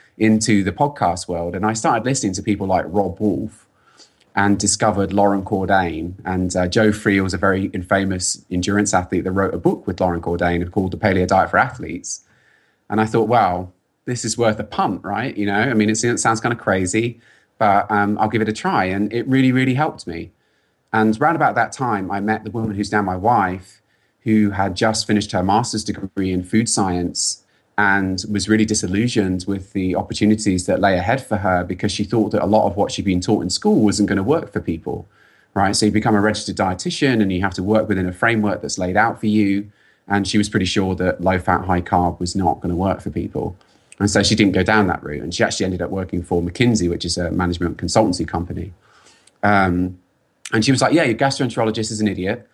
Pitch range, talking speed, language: 95-110 Hz, 225 wpm, English